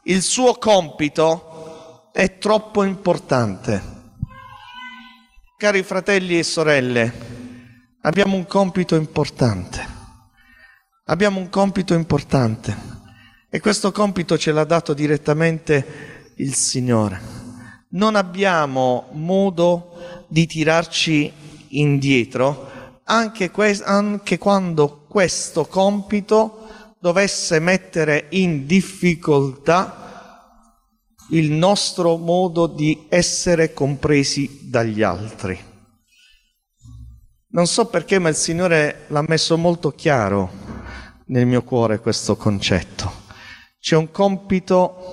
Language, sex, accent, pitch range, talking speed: Italian, male, native, 125-190 Hz, 90 wpm